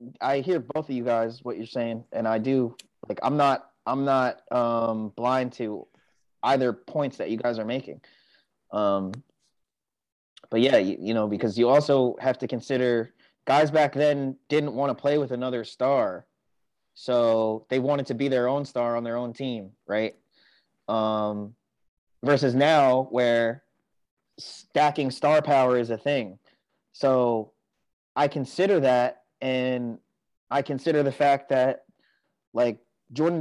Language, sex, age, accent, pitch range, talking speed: English, male, 20-39, American, 120-145 Hz, 150 wpm